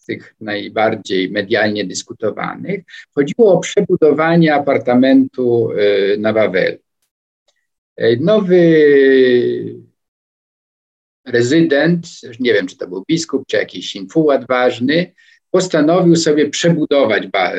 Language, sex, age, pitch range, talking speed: Polish, male, 50-69, 125-180 Hz, 85 wpm